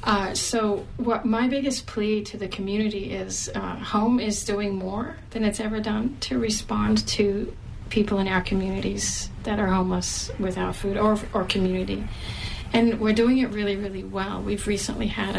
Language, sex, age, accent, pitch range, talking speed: English, female, 40-59, American, 185-220 Hz, 175 wpm